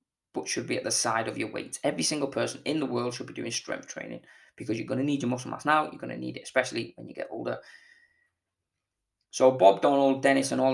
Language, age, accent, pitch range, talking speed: English, 20-39, British, 90-135 Hz, 250 wpm